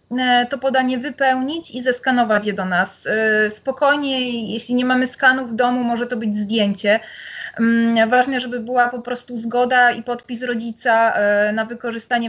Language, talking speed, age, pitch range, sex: Polish, 145 wpm, 30-49, 220-255 Hz, female